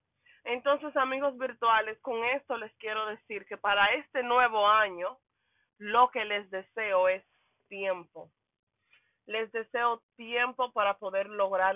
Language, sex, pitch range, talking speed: English, female, 185-225 Hz, 130 wpm